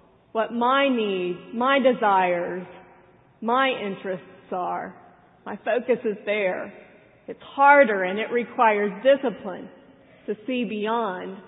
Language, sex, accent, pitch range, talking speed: English, female, American, 200-245 Hz, 110 wpm